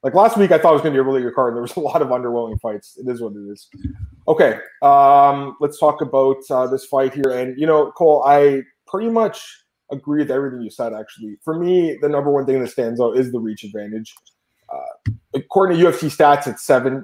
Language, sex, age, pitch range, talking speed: English, male, 20-39, 130-165 Hz, 240 wpm